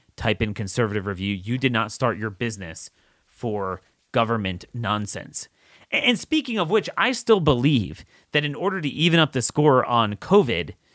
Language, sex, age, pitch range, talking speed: English, male, 30-49, 115-150 Hz, 165 wpm